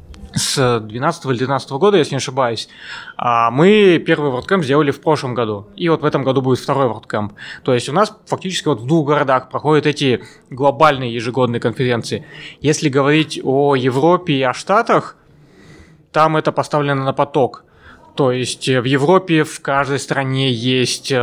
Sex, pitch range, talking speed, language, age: male, 125-150 Hz, 155 wpm, Russian, 20-39